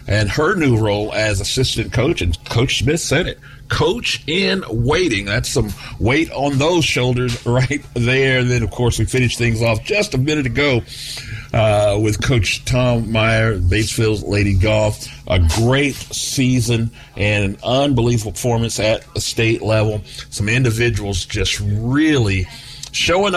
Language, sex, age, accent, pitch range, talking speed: English, male, 50-69, American, 110-135 Hz, 150 wpm